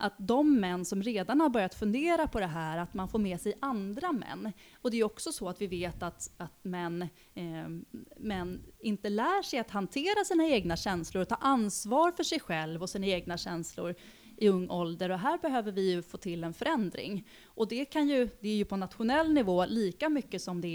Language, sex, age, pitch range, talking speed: Swedish, female, 30-49, 180-240 Hz, 215 wpm